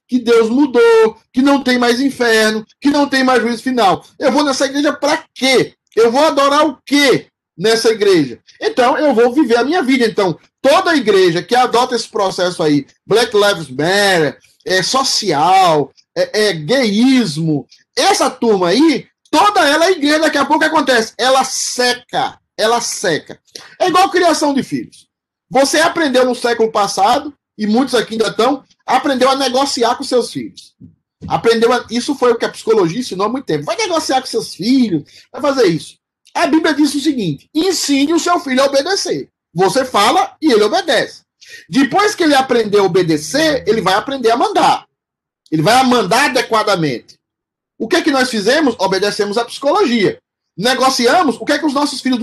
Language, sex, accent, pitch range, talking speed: Portuguese, male, Brazilian, 225-295 Hz, 180 wpm